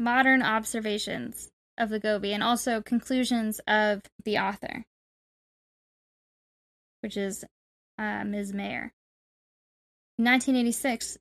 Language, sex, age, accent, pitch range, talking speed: English, female, 10-29, American, 220-245 Hz, 95 wpm